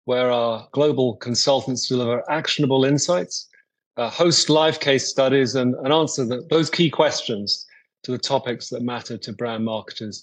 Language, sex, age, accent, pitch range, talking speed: English, male, 30-49, British, 120-145 Hz, 155 wpm